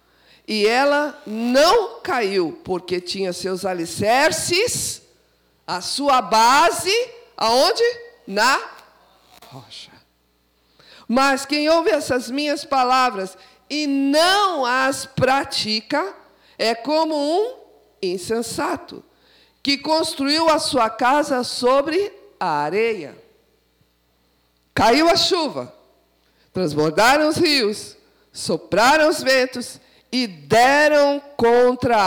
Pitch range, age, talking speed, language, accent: 175-280 Hz, 50-69, 90 wpm, Portuguese, Brazilian